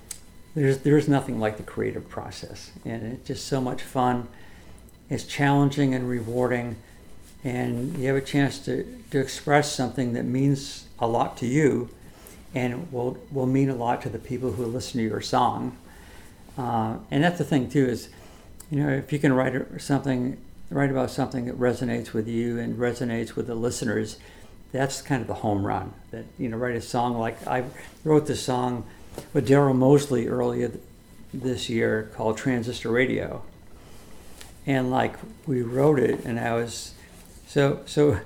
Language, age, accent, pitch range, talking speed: English, 60-79, American, 115-135 Hz, 170 wpm